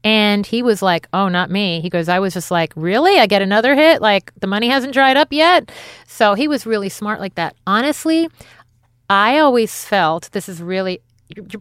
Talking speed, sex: 205 wpm, female